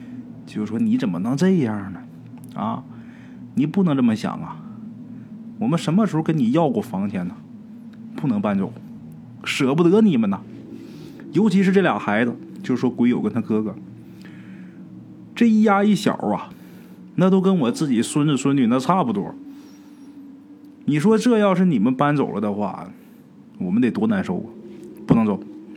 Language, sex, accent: Chinese, male, native